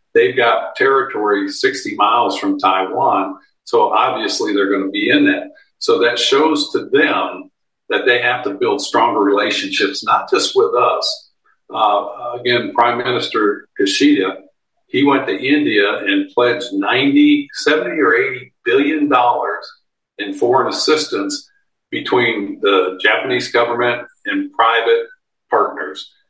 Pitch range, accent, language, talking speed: 295-420 Hz, American, English, 130 wpm